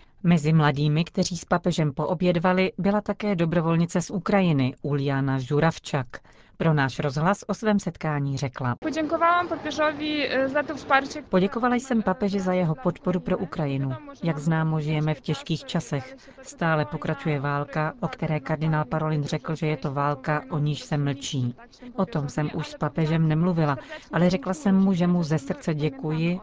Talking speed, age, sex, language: 150 wpm, 40-59, female, Czech